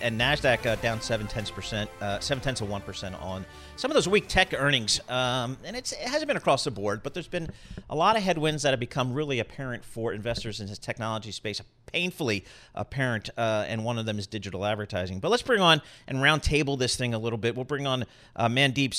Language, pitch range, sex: English, 115-140 Hz, male